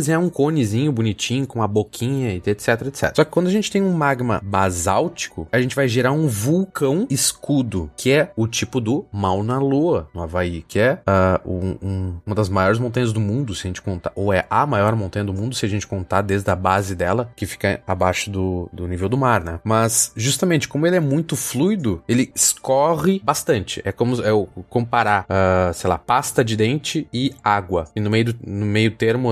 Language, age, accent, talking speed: Portuguese, 20-39, Brazilian, 215 wpm